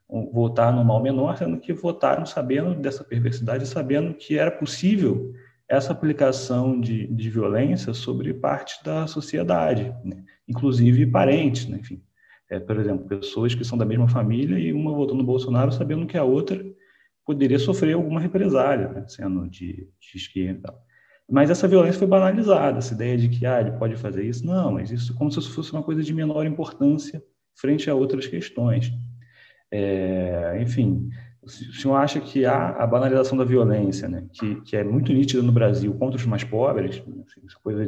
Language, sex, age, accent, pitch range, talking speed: Portuguese, male, 30-49, Brazilian, 115-140 Hz, 175 wpm